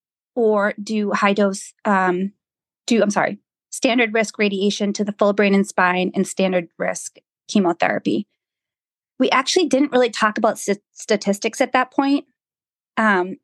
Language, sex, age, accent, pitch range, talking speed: English, female, 20-39, American, 200-235 Hz, 145 wpm